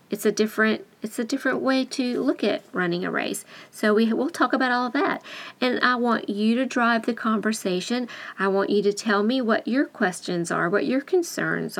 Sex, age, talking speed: female, 50-69, 215 wpm